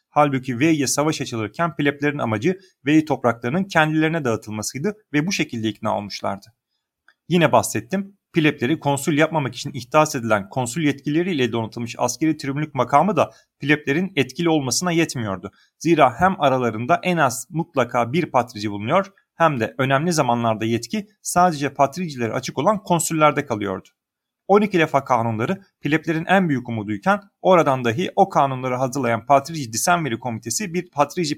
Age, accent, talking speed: 40-59, native, 135 wpm